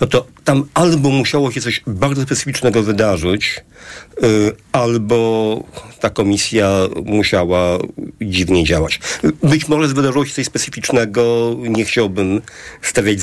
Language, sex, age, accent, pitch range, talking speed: Polish, male, 50-69, native, 110-150 Hz, 115 wpm